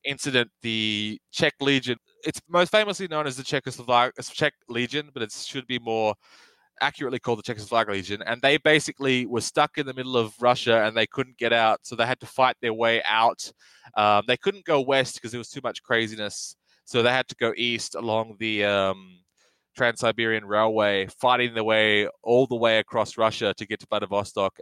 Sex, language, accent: male, English, Australian